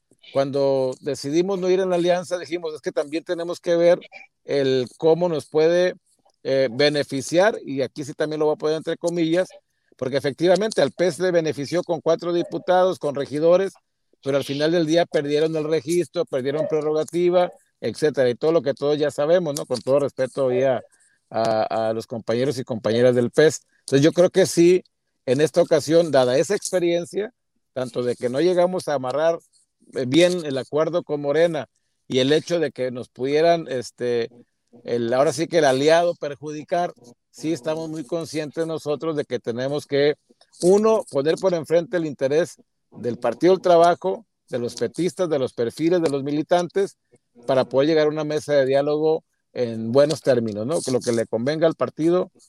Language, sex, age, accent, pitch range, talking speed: Spanish, male, 50-69, Mexican, 135-170 Hz, 180 wpm